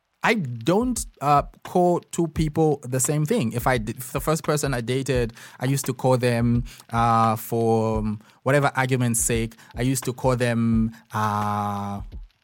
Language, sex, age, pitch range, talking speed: English, male, 20-39, 120-155 Hz, 155 wpm